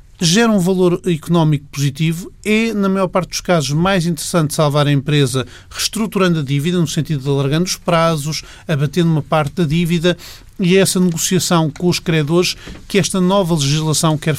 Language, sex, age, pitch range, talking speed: Portuguese, male, 40-59, 145-175 Hz, 175 wpm